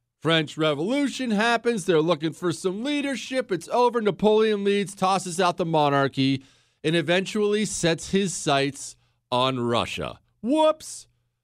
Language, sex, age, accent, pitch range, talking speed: English, male, 40-59, American, 140-205 Hz, 125 wpm